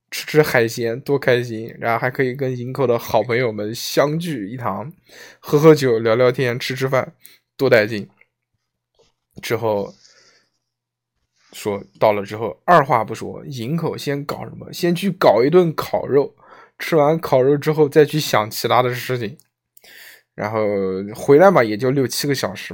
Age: 20-39